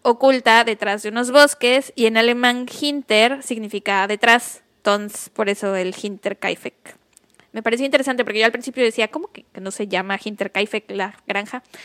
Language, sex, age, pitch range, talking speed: Spanish, female, 10-29, 215-275 Hz, 165 wpm